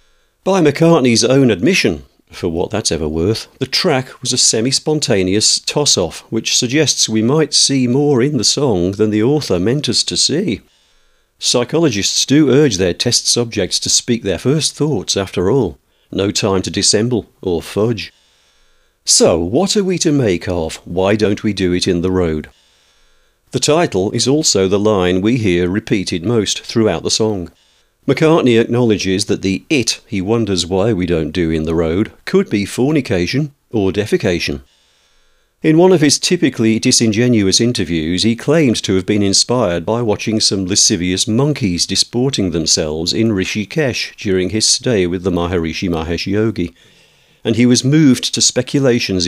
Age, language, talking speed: 50-69, English, 160 wpm